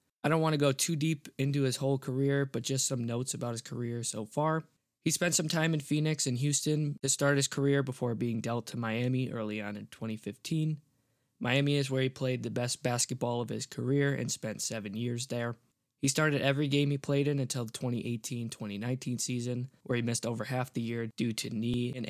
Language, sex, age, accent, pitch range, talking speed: English, male, 20-39, American, 120-140 Hz, 215 wpm